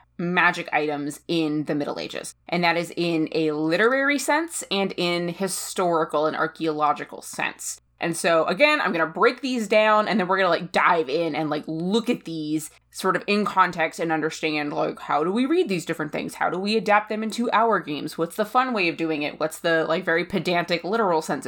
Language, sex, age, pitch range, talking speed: English, female, 20-39, 155-195 Hz, 215 wpm